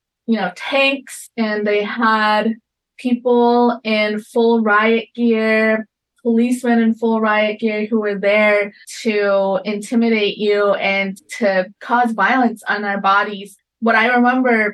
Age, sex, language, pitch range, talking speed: 20-39, female, English, 205-235 Hz, 130 wpm